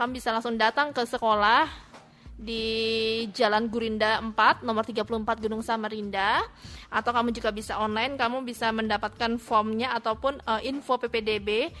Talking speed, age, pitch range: 130 wpm, 20-39, 220-260 Hz